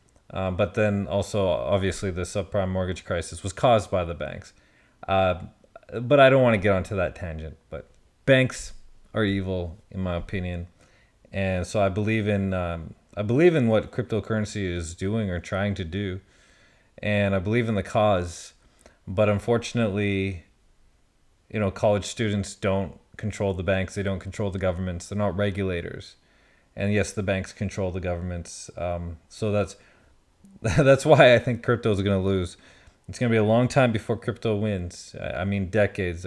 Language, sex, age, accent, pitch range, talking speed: English, male, 30-49, American, 95-105 Hz, 170 wpm